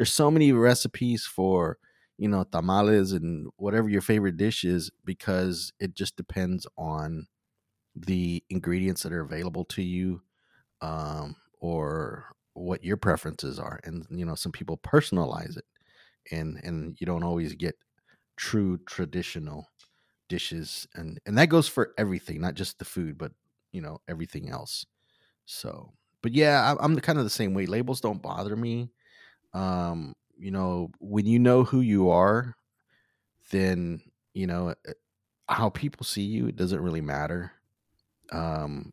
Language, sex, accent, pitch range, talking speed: English, male, American, 85-110 Hz, 150 wpm